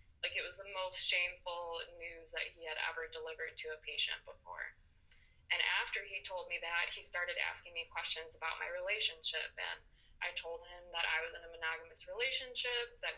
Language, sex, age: English, female, 20-39